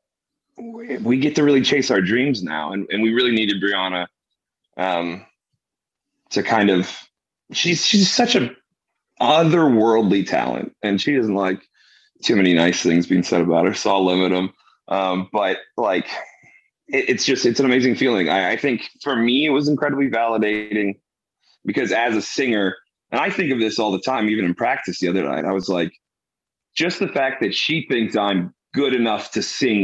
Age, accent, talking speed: 30-49, American, 185 wpm